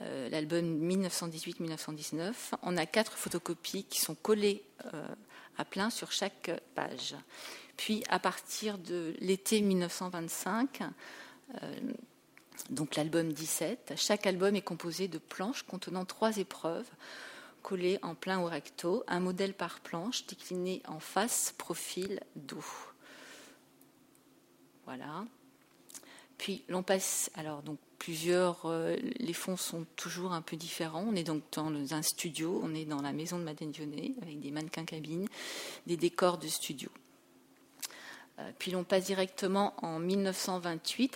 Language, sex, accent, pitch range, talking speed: French, female, French, 165-200 Hz, 135 wpm